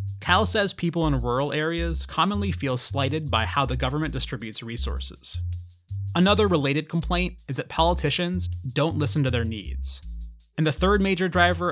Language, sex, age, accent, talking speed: English, male, 30-49, American, 160 wpm